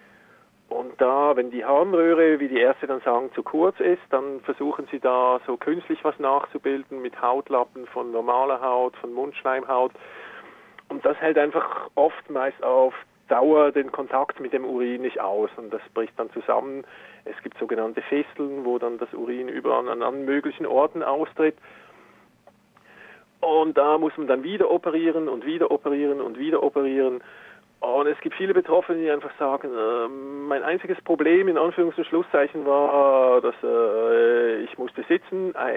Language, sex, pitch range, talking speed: German, male, 130-170 Hz, 165 wpm